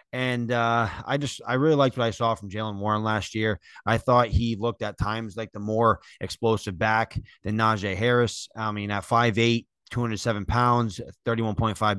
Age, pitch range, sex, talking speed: 30-49, 105-120 Hz, male, 180 wpm